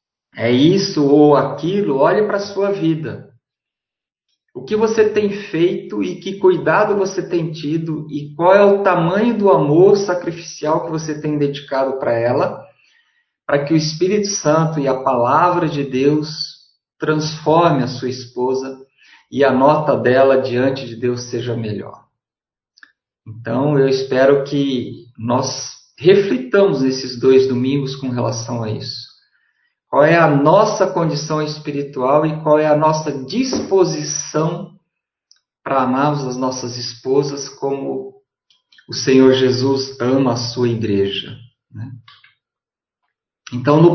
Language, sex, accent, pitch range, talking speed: Portuguese, male, Brazilian, 130-170 Hz, 135 wpm